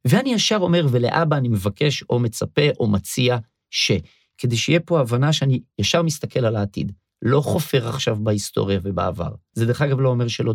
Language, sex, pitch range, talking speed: Hebrew, male, 105-140 Hz, 175 wpm